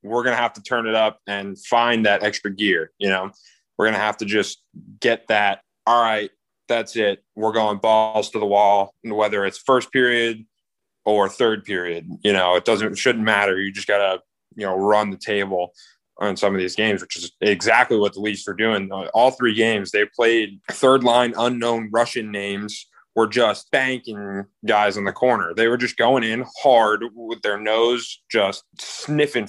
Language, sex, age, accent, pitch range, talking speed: English, male, 20-39, American, 100-120 Hz, 195 wpm